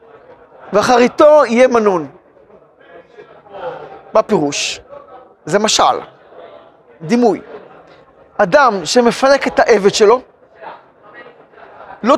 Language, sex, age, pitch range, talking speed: Hebrew, male, 40-59, 220-295 Hz, 70 wpm